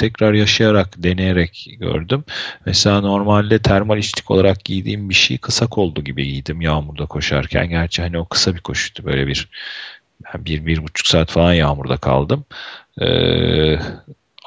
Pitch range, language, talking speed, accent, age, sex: 85-110 Hz, Turkish, 145 wpm, native, 40-59, male